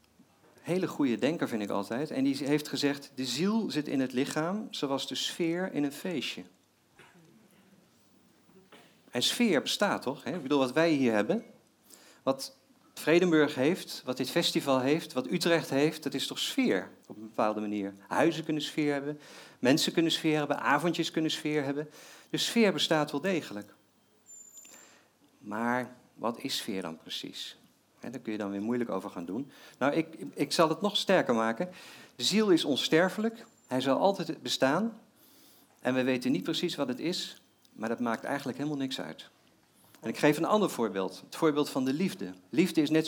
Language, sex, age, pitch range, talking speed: Dutch, male, 50-69, 130-170 Hz, 180 wpm